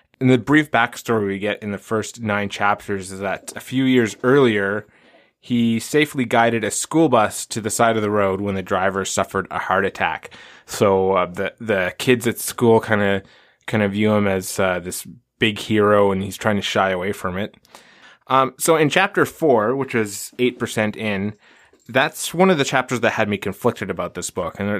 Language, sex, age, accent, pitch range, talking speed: English, male, 20-39, American, 100-130 Hz, 200 wpm